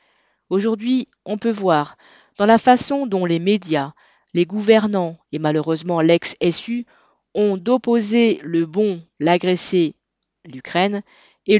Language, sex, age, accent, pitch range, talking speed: French, female, 40-59, French, 170-215 Hz, 115 wpm